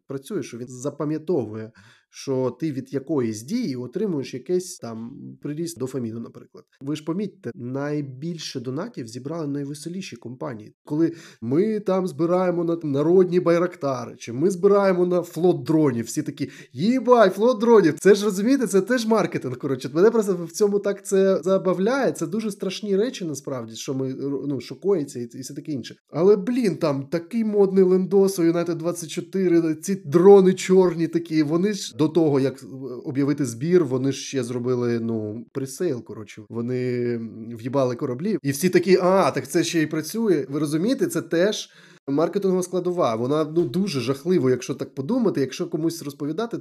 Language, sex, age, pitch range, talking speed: Ukrainian, male, 20-39, 130-180 Hz, 155 wpm